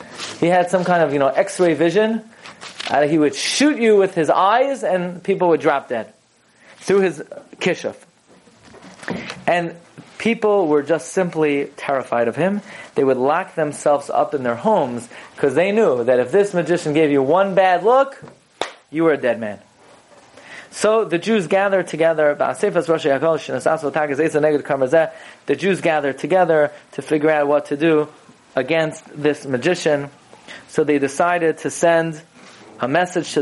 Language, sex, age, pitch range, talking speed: English, male, 30-49, 145-185 Hz, 150 wpm